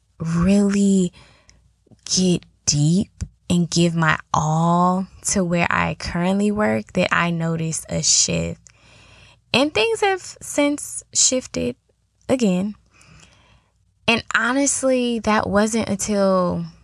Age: 10-29